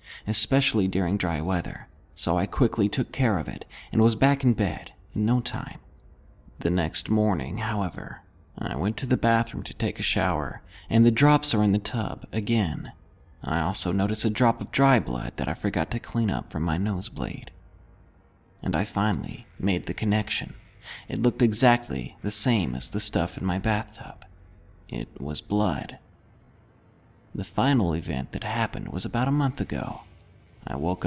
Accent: American